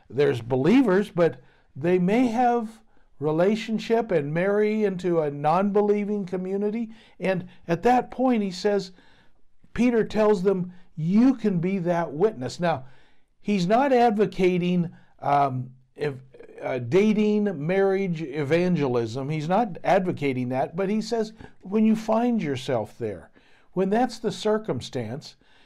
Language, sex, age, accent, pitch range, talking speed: English, male, 60-79, American, 160-210 Hz, 120 wpm